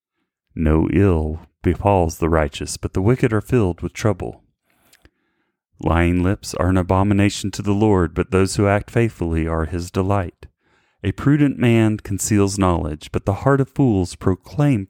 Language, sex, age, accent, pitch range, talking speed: English, male, 30-49, American, 85-105 Hz, 155 wpm